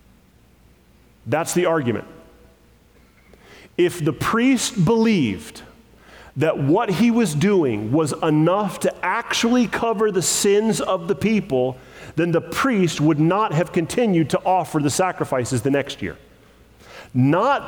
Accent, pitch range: American, 145-215 Hz